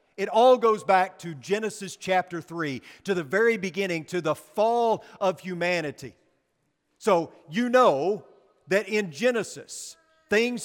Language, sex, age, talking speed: English, male, 40-59, 135 wpm